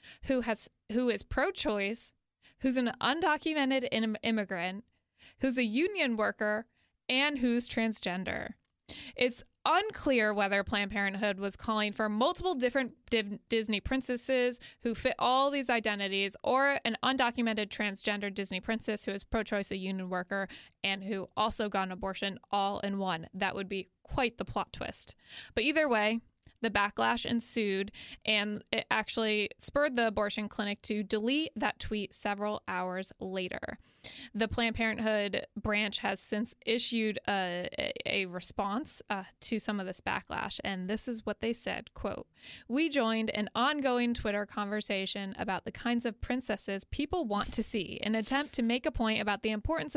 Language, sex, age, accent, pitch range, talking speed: English, female, 20-39, American, 205-255 Hz, 155 wpm